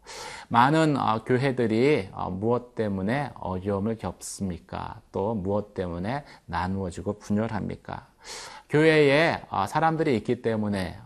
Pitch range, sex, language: 100-150 Hz, male, Korean